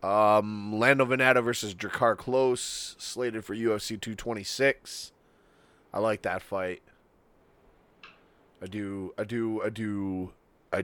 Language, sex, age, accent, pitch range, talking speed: English, male, 20-39, American, 85-110 Hz, 115 wpm